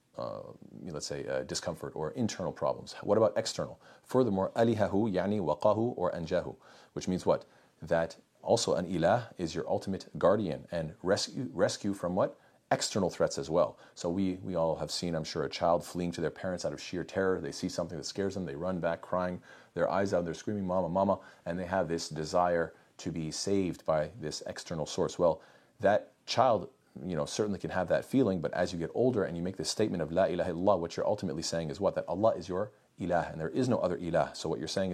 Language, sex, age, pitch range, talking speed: English, male, 40-59, 85-100 Hz, 220 wpm